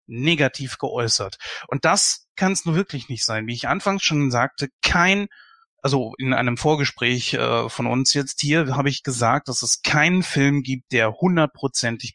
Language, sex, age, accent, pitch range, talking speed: German, male, 30-49, German, 130-185 Hz, 175 wpm